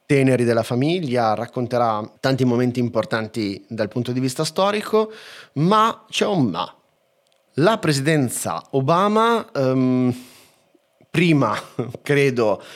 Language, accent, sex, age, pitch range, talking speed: Italian, native, male, 30-49, 110-155 Hz, 100 wpm